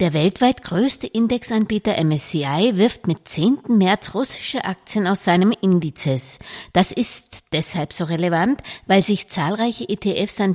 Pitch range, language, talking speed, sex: 155-215 Hz, German, 135 wpm, female